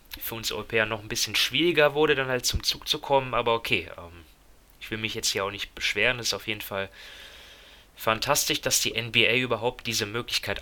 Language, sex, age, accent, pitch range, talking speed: German, male, 20-39, German, 100-125 Hz, 210 wpm